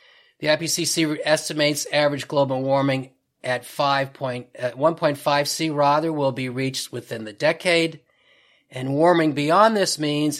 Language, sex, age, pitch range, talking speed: English, male, 40-59, 125-155 Hz, 135 wpm